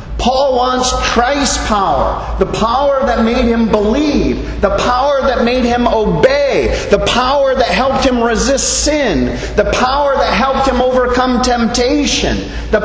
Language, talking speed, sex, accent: English, 145 wpm, male, American